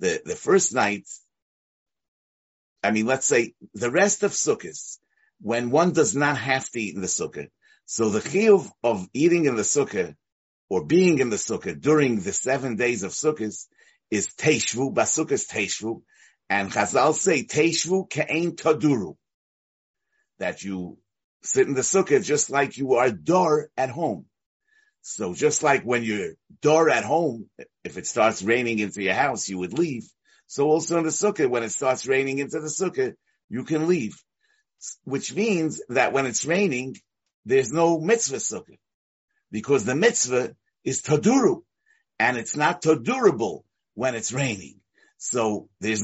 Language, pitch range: English, 115-185 Hz